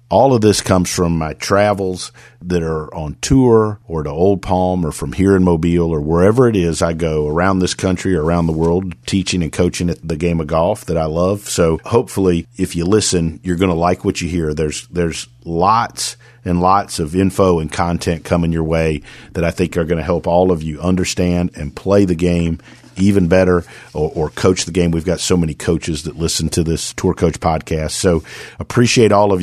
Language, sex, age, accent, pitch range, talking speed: English, male, 50-69, American, 85-95 Hz, 215 wpm